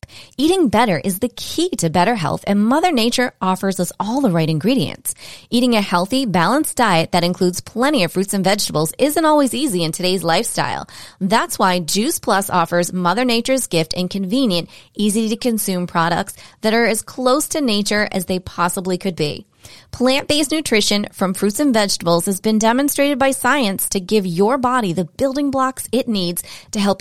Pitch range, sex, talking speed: 175-235 Hz, female, 180 wpm